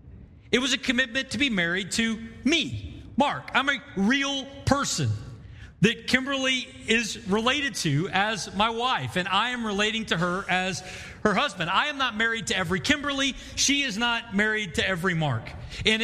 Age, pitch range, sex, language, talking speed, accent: 40-59, 165-255 Hz, male, English, 170 wpm, American